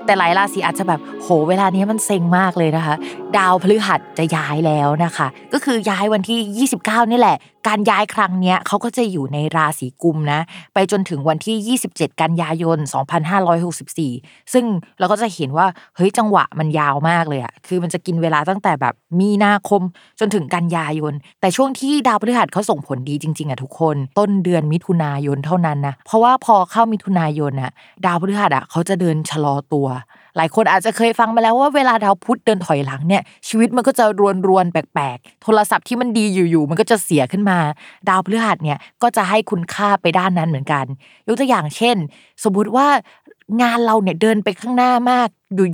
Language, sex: Thai, female